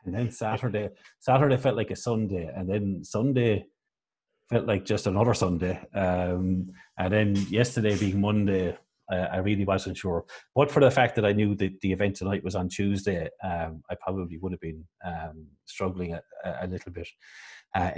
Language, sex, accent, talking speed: English, male, Irish, 180 wpm